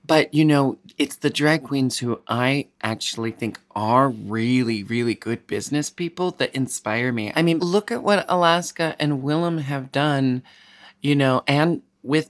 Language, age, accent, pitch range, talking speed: English, 30-49, American, 115-145 Hz, 165 wpm